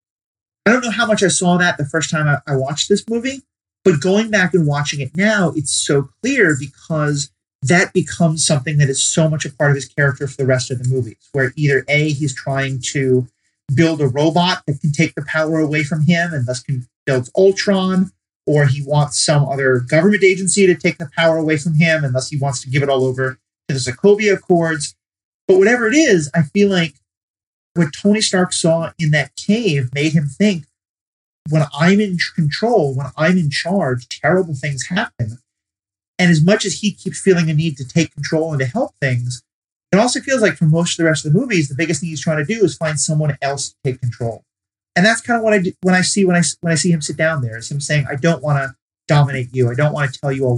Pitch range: 135-180 Hz